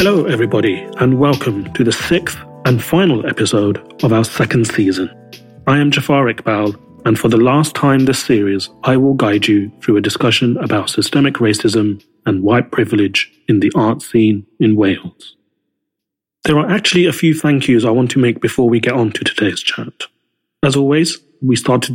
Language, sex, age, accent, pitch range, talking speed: English, male, 30-49, British, 110-140 Hz, 180 wpm